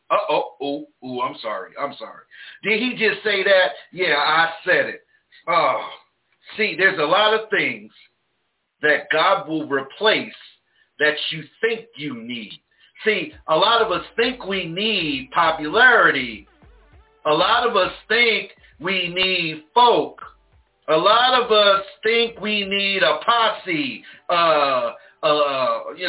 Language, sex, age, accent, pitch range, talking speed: English, male, 50-69, American, 170-235 Hz, 140 wpm